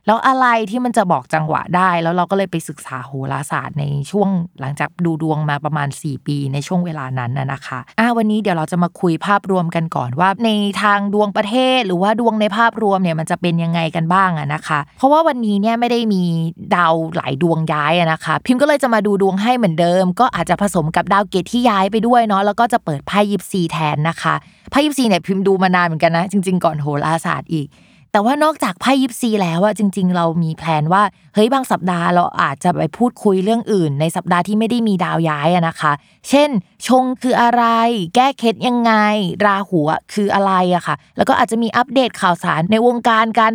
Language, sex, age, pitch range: Thai, female, 20-39, 165-220 Hz